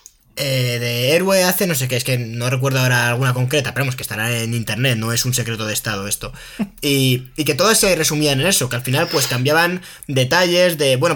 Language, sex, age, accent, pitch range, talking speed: Spanish, male, 20-39, Spanish, 125-160 Hz, 235 wpm